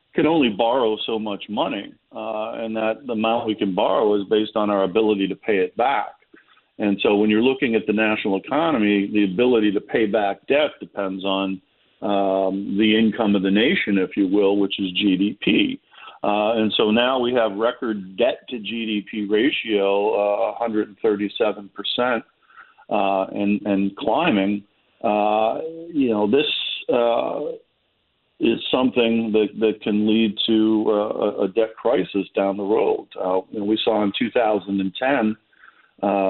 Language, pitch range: English, 100-110 Hz